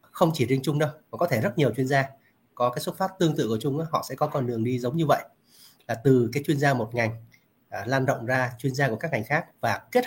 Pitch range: 120-155 Hz